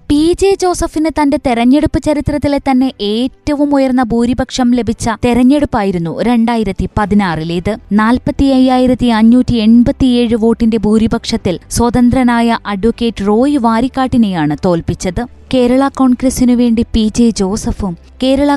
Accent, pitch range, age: native, 210-260 Hz, 20-39